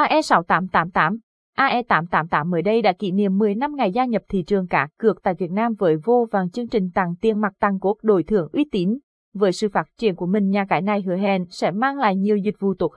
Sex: female